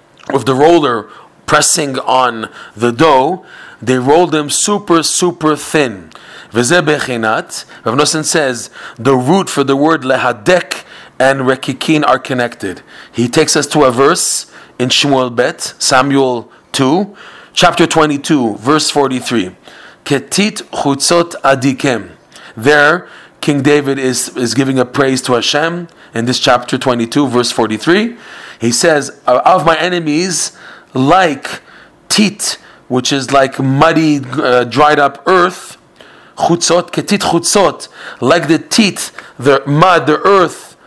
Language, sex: English, male